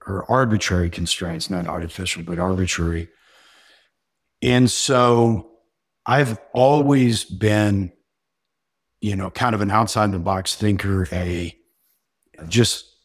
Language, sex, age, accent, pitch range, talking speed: English, male, 50-69, American, 90-115 Hz, 95 wpm